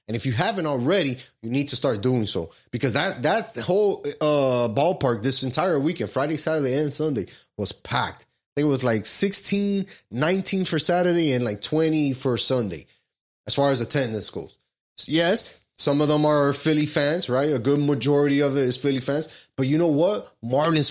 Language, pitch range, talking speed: English, 130-165 Hz, 190 wpm